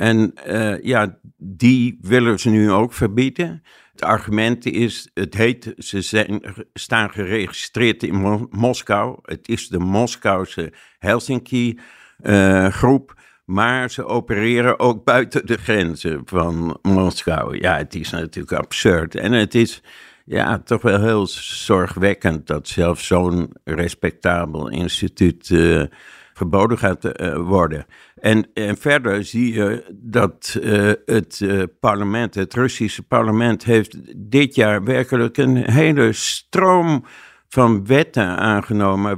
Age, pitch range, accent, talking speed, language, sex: 60-79, 95-120 Hz, Dutch, 120 wpm, Dutch, male